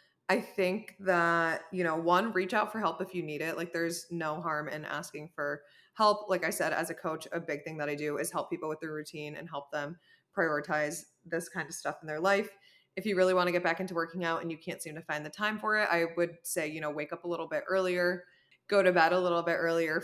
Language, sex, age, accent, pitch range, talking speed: English, female, 20-39, American, 160-190 Hz, 265 wpm